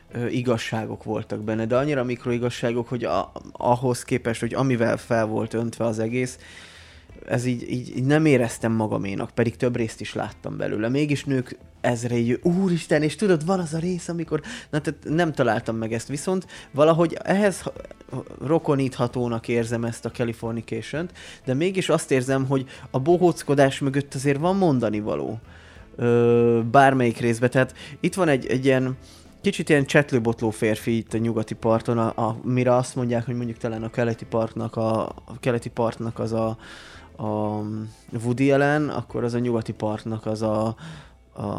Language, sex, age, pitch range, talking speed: Hungarian, male, 20-39, 110-140 Hz, 160 wpm